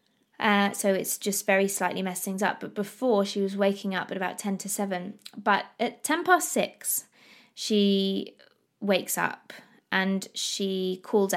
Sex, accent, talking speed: female, British, 165 wpm